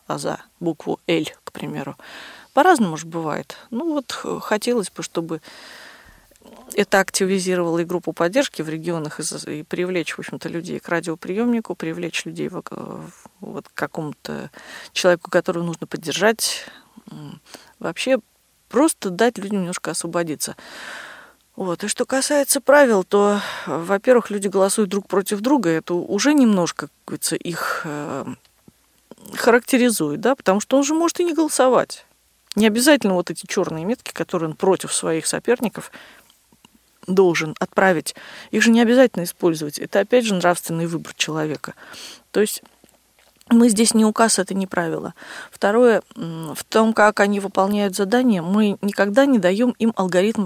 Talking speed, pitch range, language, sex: 140 wpm, 170-235 Hz, Russian, female